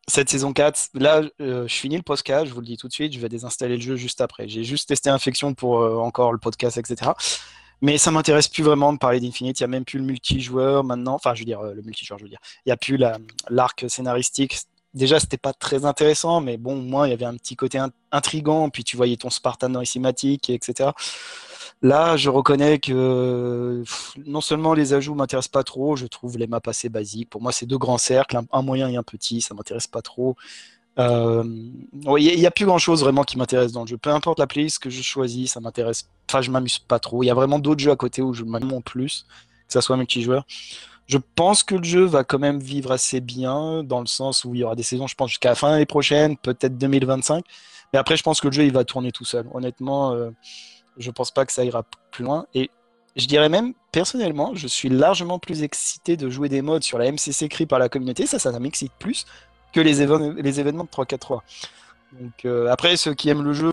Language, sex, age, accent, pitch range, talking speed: French, male, 20-39, French, 125-145 Hz, 250 wpm